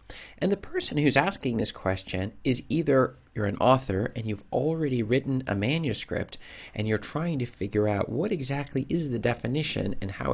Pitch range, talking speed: 100-130 Hz, 180 wpm